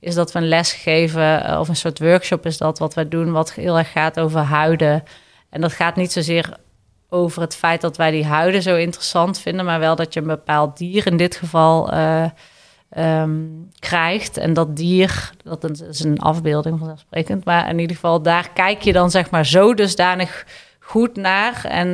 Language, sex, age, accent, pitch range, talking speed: Dutch, female, 30-49, Dutch, 160-180 Hz, 195 wpm